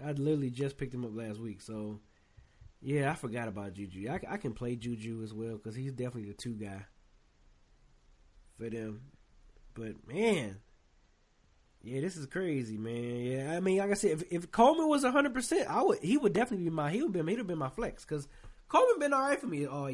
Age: 20-39